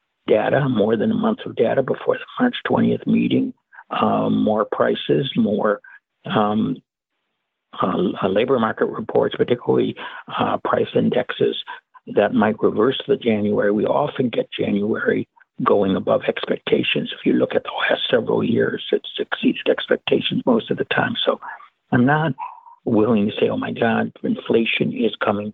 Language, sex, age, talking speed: English, male, 60-79, 150 wpm